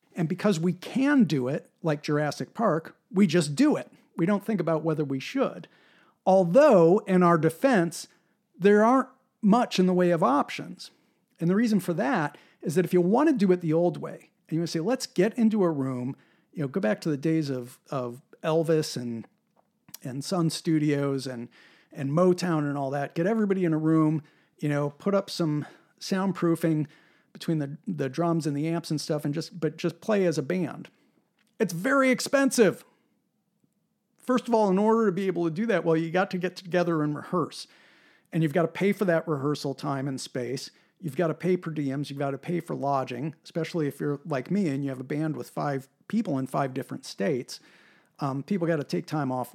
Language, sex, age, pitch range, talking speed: English, male, 40-59, 150-200 Hz, 210 wpm